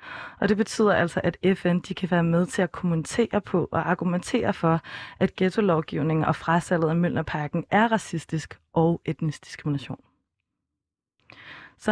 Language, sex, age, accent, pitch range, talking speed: Danish, female, 20-39, native, 165-190 Hz, 145 wpm